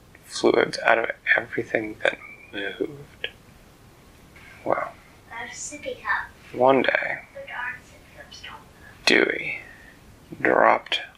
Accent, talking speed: American, 60 wpm